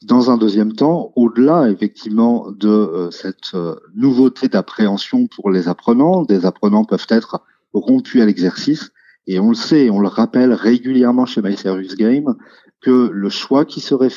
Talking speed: 155 wpm